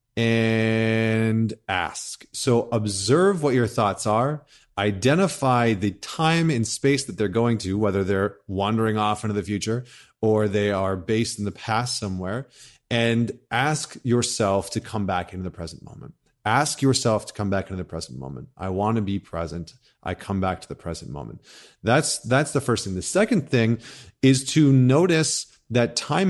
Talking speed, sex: 175 wpm, male